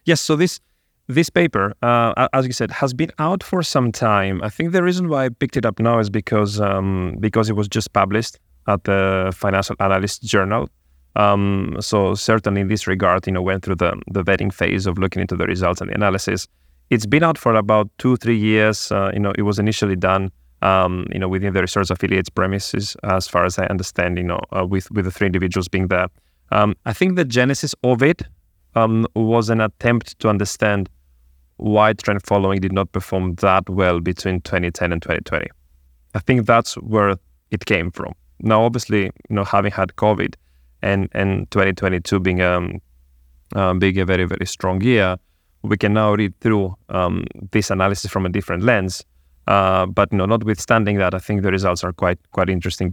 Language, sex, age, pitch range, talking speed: English, male, 30-49, 90-110 Hz, 200 wpm